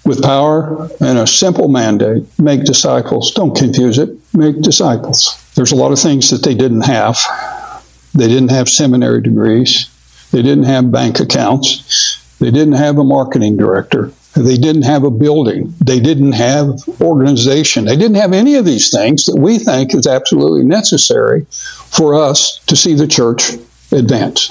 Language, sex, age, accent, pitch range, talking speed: English, male, 60-79, American, 125-150 Hz, 165 wpm